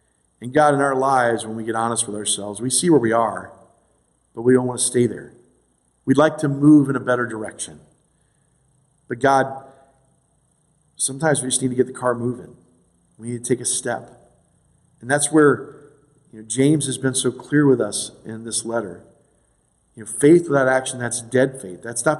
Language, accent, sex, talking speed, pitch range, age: English, American, male, 195 wpm, 100-130 Hz, 40-59